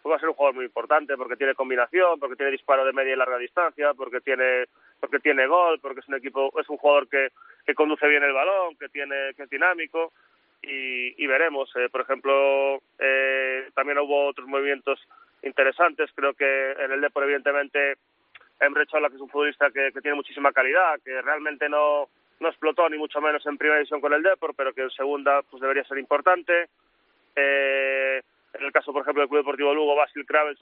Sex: male